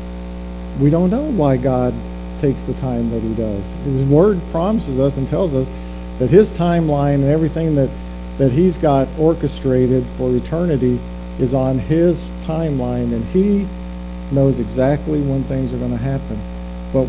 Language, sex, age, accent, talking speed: English, male, 50-69, American, 160 wpm